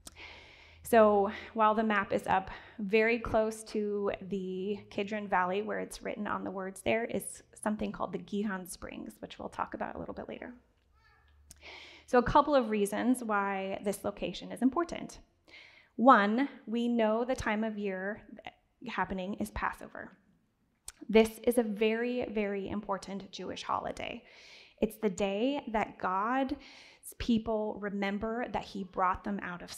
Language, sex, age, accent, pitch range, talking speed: English, female, 10-29, American, 200-240 Hz, 150 wpm